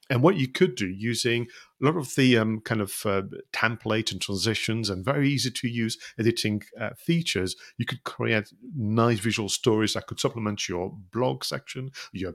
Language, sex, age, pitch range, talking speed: English, male, 50-69, 100-130 Hz, 175 wpm